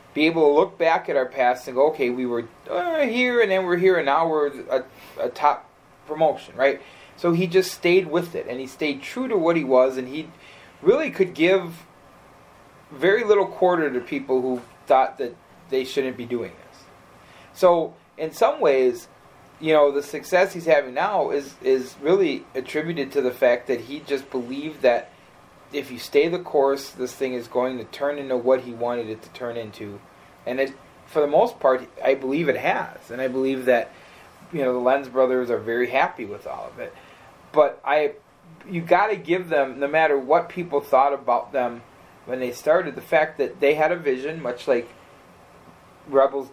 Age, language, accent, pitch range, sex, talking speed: 30-49, English, American, 130-170 Hz, male, 200 wpm